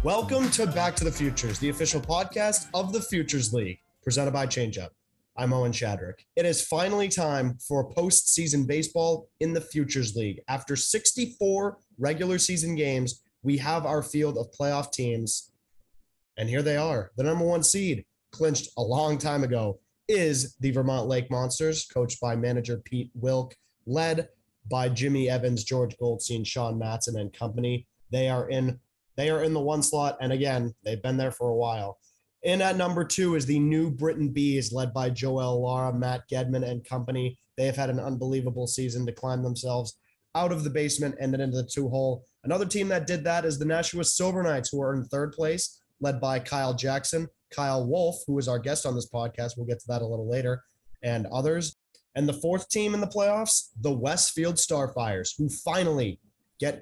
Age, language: 20-39, English